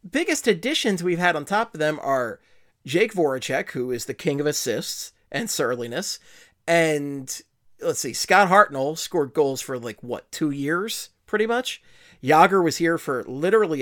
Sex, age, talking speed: male, 30-49, 165 wpm